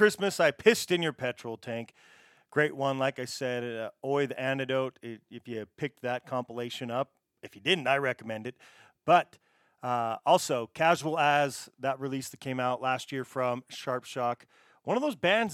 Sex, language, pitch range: male, English, 125-155 Hz